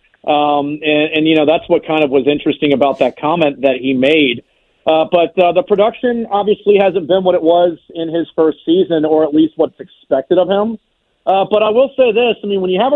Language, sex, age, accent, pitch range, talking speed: English, male, 40-59, American, 145-185 Hz, 230 wpm